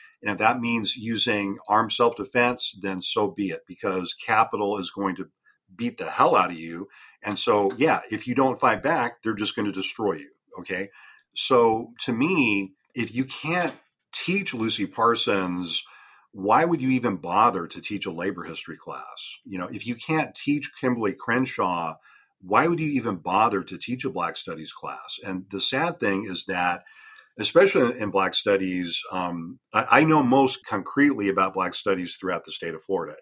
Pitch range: 95-125 Hz